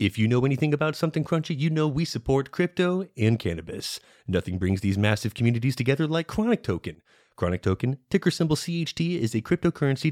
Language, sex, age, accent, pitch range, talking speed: English, male, 30-49, American, 105-140 Hz, 185 wpm